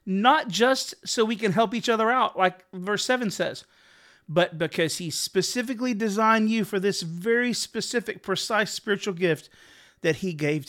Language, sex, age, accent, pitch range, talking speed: English, male, 30-49, American, 160-205 Hz, 165 wpm